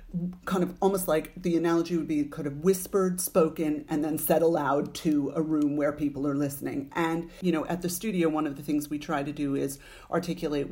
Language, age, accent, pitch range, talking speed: English, 40-59, American, 145-175 Hz, 220 wpm